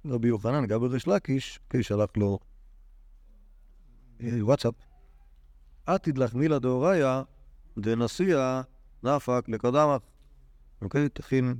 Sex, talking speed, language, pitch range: male, 90 wpm, Hebrew, 105-135 Hz